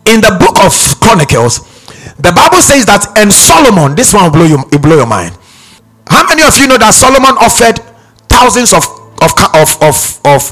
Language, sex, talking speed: English, male, 195 wpm